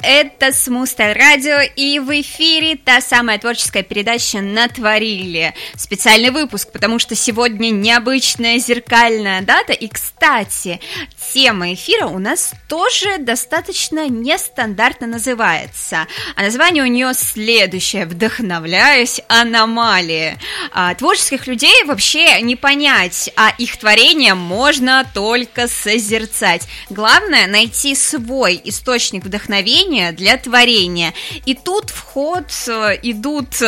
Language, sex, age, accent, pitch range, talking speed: Russian, female, 20-39, native, 210-280 Hz, 105 wpm